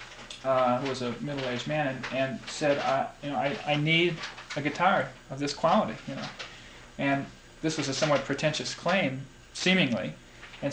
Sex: male